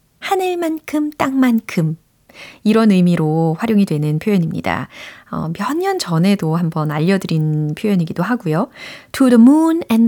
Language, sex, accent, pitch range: Korean, female, native, 170-255 Hz